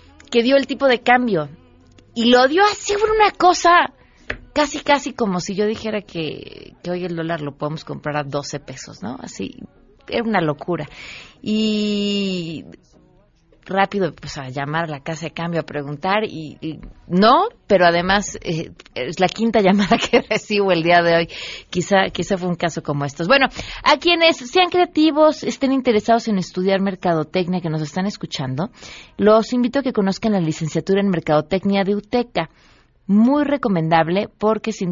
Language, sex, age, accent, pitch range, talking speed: Spanish, female, 30-49, Mexican, 165-230 Hz, 170 wpm